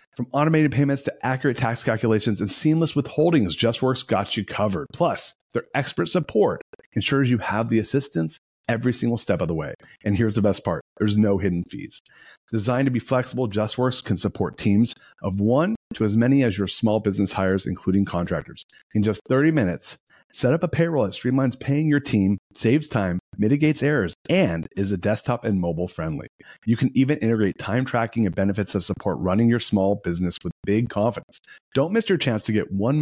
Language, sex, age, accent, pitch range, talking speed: English, male, 30-49, American, 100-135 Hz, 195 wpm